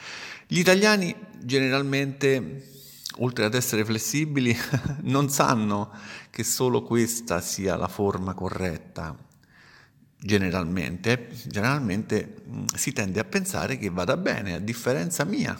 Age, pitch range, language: 50-69, 95-135 Hz, Italian